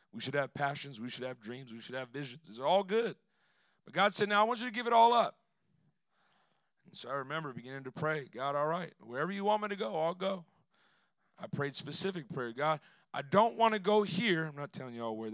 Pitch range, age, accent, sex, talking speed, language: 140-190 Hz, 40-59, American, male, 245 wpm, English